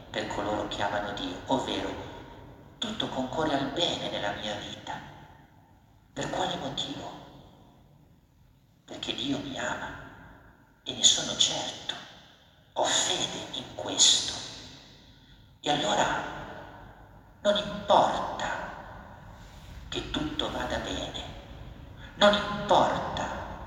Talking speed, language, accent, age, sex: 95 wpm, Italian, native, 50-69, male